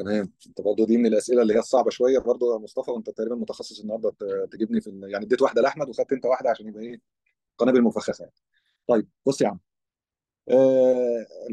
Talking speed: 185 wpm